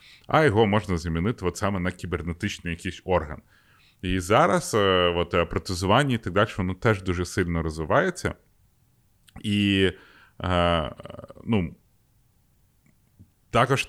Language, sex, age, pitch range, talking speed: Ukrainian, male, 30-49, 95-120 Hz, 110 wpm